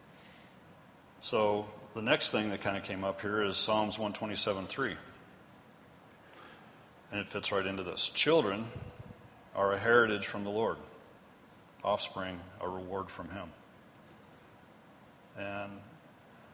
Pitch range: 95-105 Hz